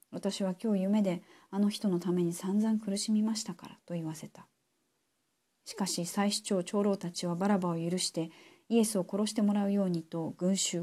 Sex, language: female, Japanese